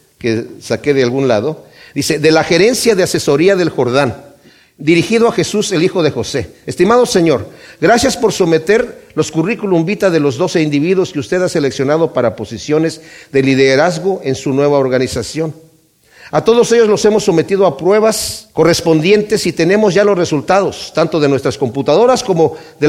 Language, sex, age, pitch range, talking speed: Spanish, male, 50-69, 150-205 Hz, 170 wpm